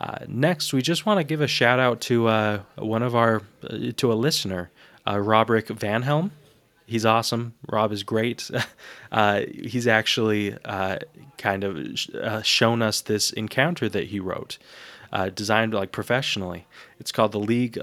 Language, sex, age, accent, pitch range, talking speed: English, male, 20-39, American, 105-120 Hz, 170 wpm